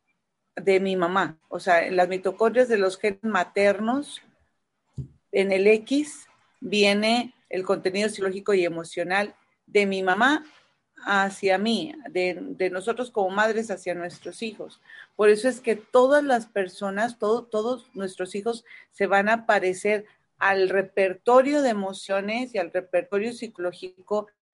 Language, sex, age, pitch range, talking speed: Spanish, female, 40-59, 185-215 Hz, 135 wpm